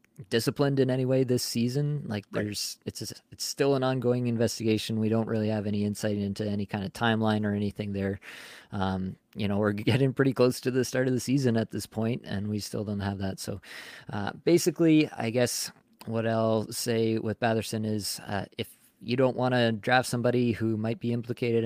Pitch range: 105-120 Hz